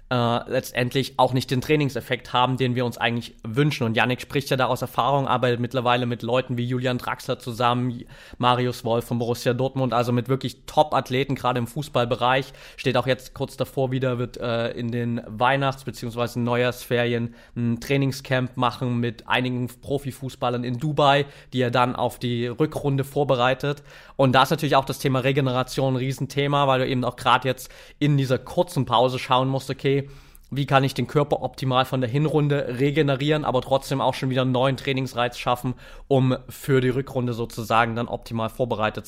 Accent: German